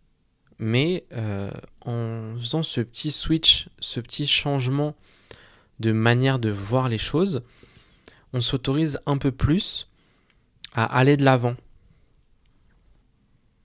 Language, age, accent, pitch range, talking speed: French, 20-39, French, 115-140 Hz, 110 wpm